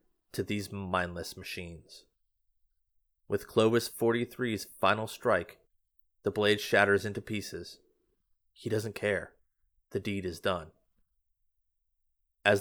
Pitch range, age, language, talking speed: 80-110 Hz, 30-49, English, 105 wpm